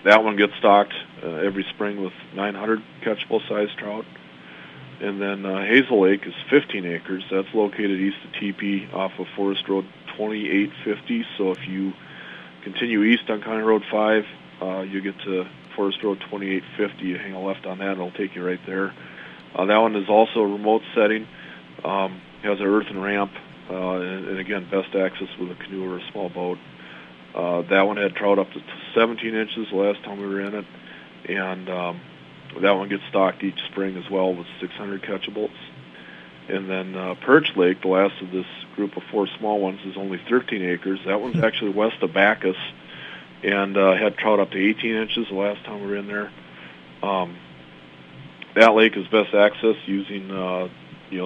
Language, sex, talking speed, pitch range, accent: English, male, 190 wpm, 90-105 Hz, American